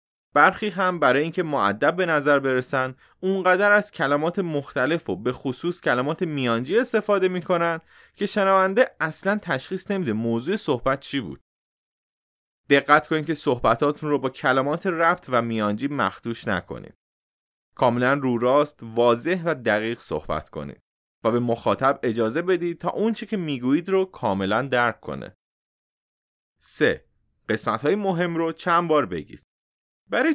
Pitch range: 120-180 Hz